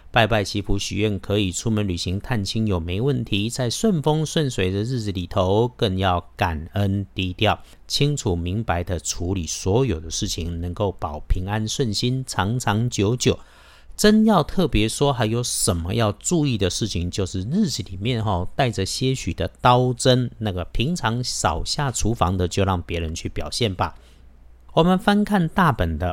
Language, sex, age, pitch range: Chinese, male, 50-69, 95-125 Hz